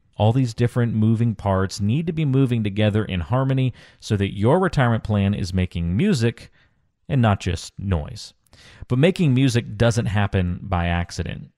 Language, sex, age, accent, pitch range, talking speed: English, male, 30-49, American, 95-130 Hz, 160 wpm